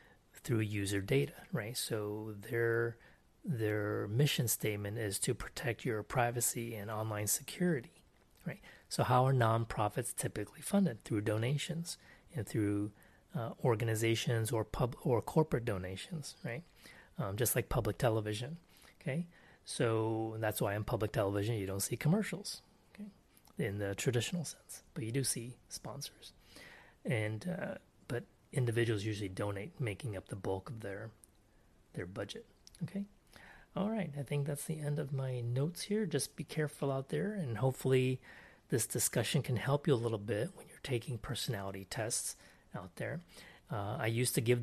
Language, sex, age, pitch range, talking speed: English, male, 30-49, 105-140 Hz, 155 wpm